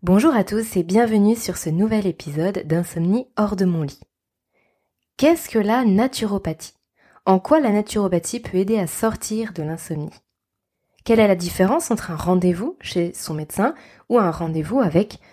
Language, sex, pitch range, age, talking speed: French, female, 175-225 Hz, 20-39, 165 wpm